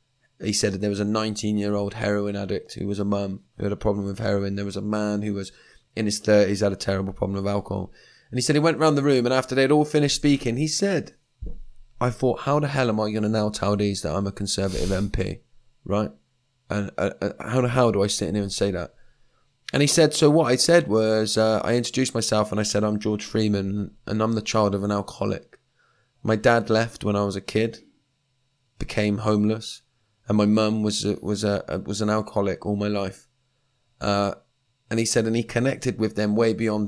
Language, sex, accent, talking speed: English, male, British, 230 wpm